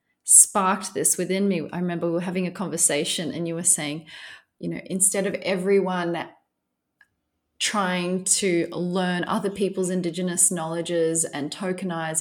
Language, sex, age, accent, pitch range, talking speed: English, female, 30-49, Australian, 165-185 Hz, 145 wpm